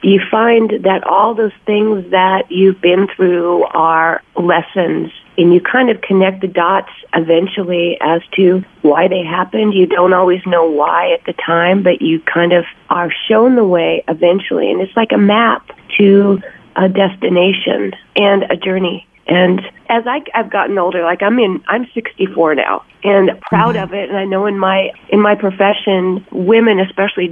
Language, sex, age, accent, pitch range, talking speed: English, female, 40-59, American, 180-220 Hz, 170 wpm